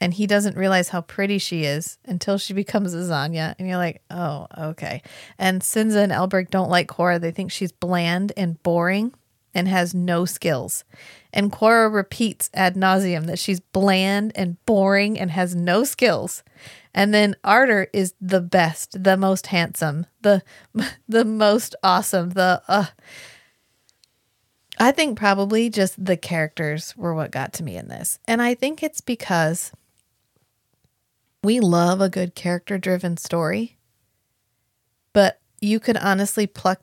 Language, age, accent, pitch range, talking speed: English, 30-49, American, 165-200 Hz, 150 wpm